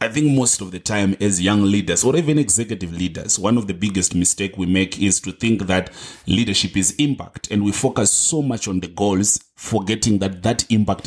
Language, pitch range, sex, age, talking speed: English, 95-120 Hz, male, 30-49, 210 wpm